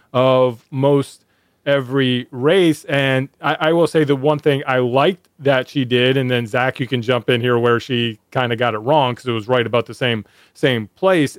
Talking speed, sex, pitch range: 215 wpm, male, 120-150 Hz